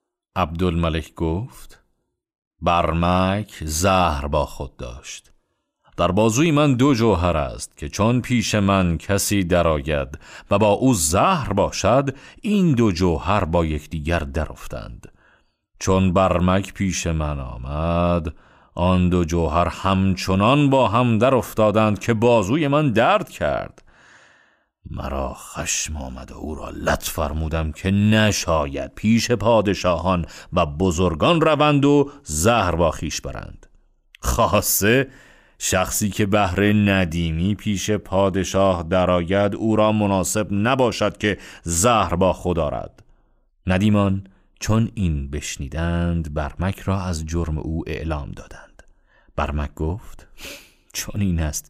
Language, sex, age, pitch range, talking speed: Persian, male, 40-59, 80-105 Hz, 115 wpm